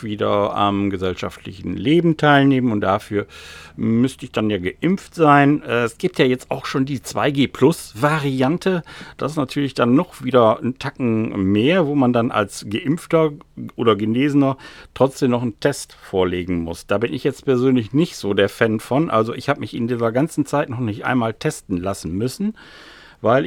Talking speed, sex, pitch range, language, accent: 175 wpm, male, 105-145 Hz, German, German